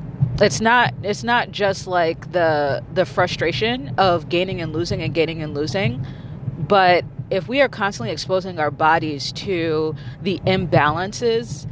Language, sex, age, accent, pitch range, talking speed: English, female, 30-49, American, 145-195 Hz, 145 wpm